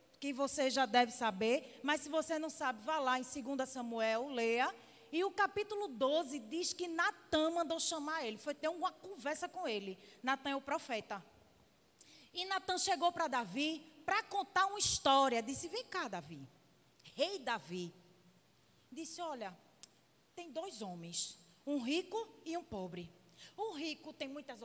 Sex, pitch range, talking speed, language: female, 250-360 Hz, 160 wpm, Portuguese